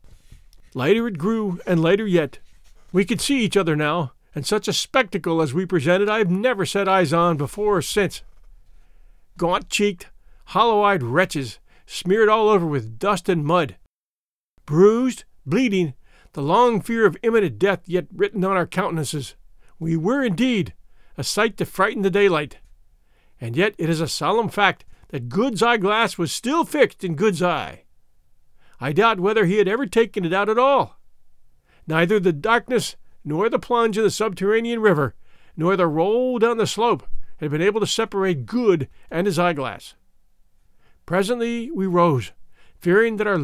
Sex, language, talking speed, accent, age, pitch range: male, English, 165 wpm, American, 50-69, 160-210 Hz